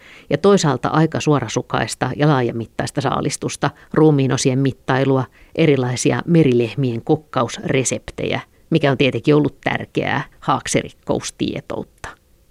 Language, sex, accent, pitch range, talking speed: Finnish, female, native, 120-150 Hz, 90 wpm